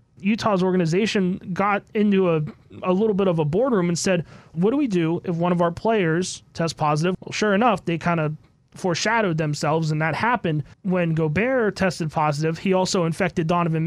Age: 30-49